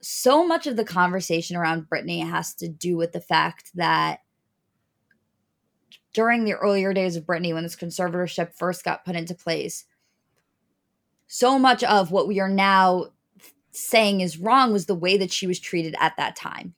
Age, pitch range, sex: 20-39, 175-215 Hz, female